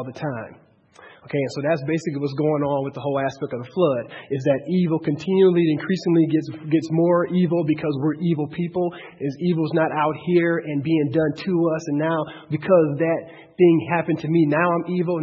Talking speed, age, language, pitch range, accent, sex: 200 wpm, 40-59, English, 150-175 Hz, American, male